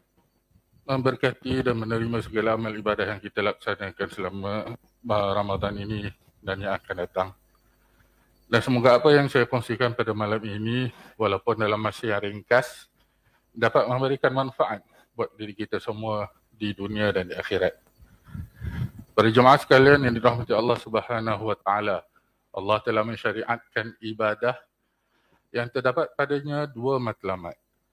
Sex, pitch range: male, 105-130 Hz